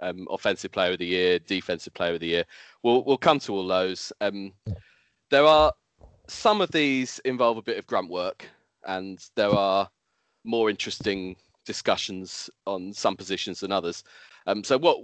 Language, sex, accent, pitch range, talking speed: English, male, British, 95-115 Hz, 170 wpm